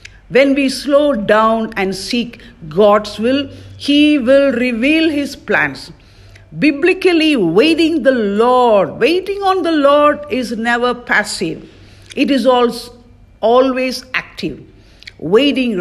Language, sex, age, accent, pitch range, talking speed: English, female, 50-69, Indian, 205-275 Hz, 110 wpm